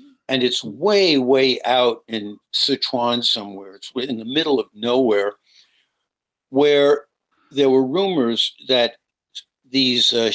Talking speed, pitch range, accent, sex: 120 wpm, 120-150 Hz, American, male